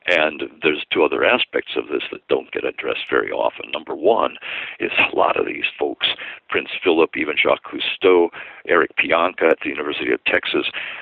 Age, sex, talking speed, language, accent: 60-79, male, 180 wpm, English, American